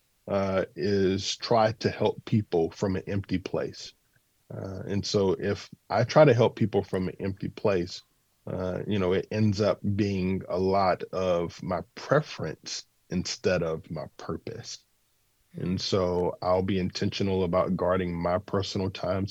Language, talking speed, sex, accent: English, 150 wpm, male, American